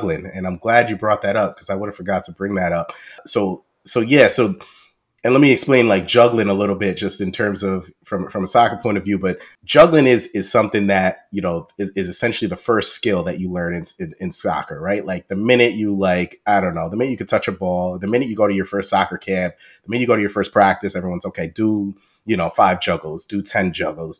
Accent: American